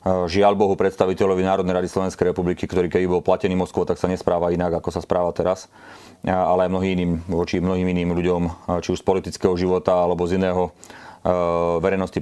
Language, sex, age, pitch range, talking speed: Slovak, male, 30-49, 85-95 Hz, 170 wpm